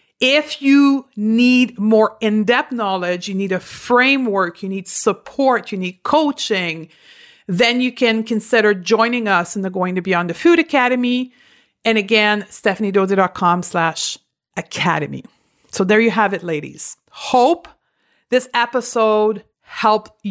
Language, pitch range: English, 190-245 Hz